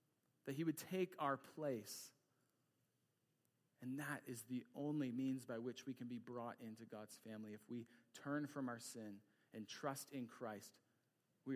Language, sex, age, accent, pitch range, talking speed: English, male, 40-59, American, 120-145 Hz, 165 wpm